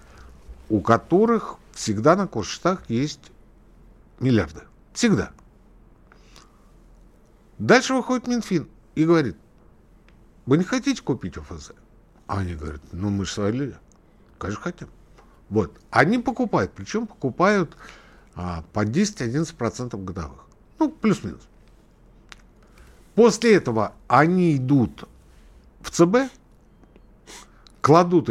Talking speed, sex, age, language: 95 wpm, male, 60-79, Russian